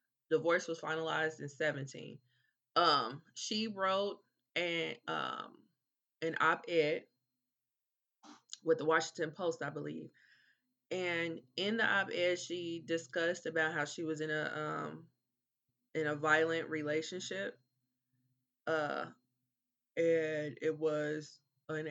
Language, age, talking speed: English, 20-39, 110 wpm